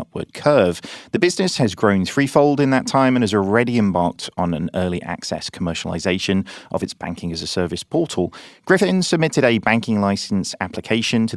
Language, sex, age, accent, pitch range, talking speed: English, male, 30-49, British, 90-125 Hz, 175 wpm